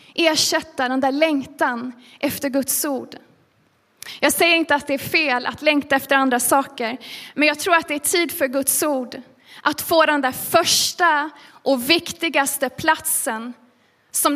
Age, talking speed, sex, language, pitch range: 20-39, 160 wpm, female, Swedish, 275-340 Hz